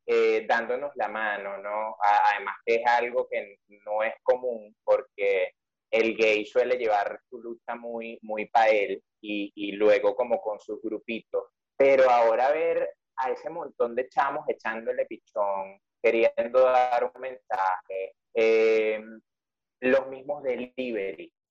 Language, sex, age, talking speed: Spanish, male, 20-39, 140 wpm